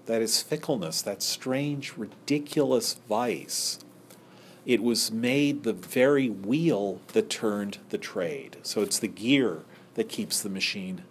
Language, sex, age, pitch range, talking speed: English, male, 40-59, 110-145 Hz, 135 wpm